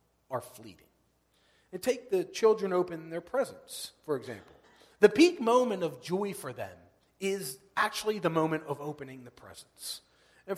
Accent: American